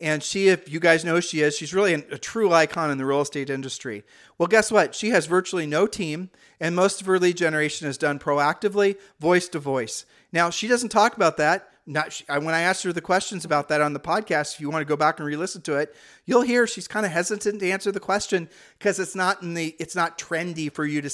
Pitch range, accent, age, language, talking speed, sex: 150-190 Hz, American, 40-59, English, 245 wpm, male